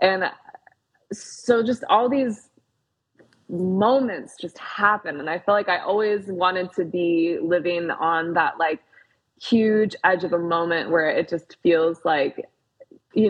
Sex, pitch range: female, 165-195 Hz